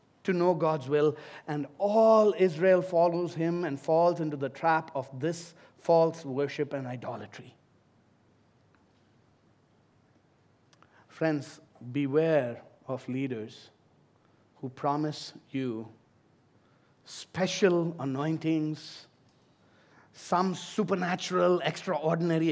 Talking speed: 85 wpm